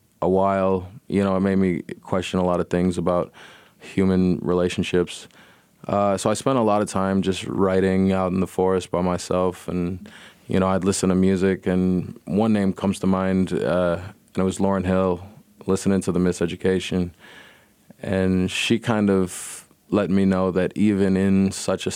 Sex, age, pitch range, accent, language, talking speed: male, 20-39, 90-100 Hz, American, English, 180 wpm